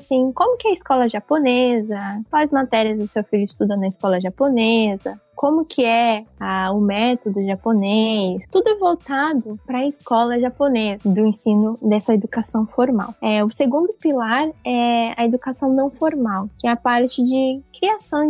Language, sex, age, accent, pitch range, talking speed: Portuguese, female, 10-29, Brazilian, 205-260 Hz, 160 wpm